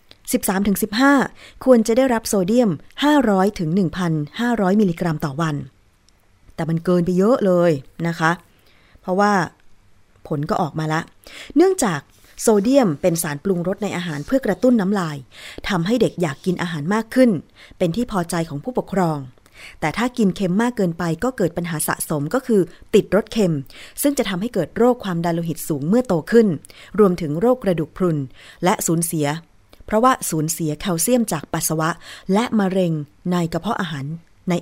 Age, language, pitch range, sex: 20-39, Thai, 155-210 Hz, female